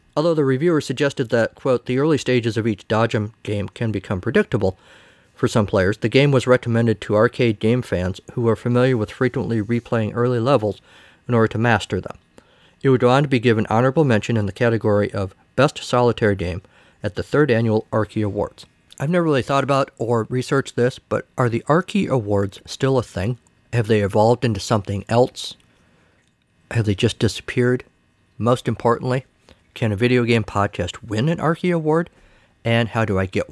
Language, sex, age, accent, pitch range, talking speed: English, male, 50-69, American, 105-135 Hz, 185 wpm